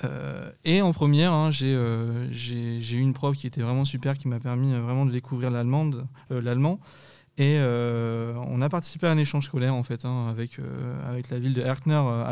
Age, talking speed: 20-39, 200 wpm